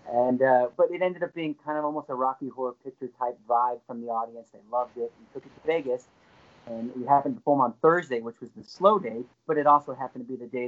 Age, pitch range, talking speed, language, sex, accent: 30-49, 140-220 Hz, 265 wpm, English, male, American